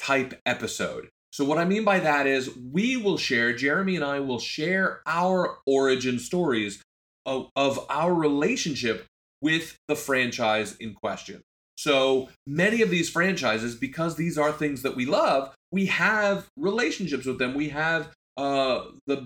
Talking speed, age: 155 wpm, 30-49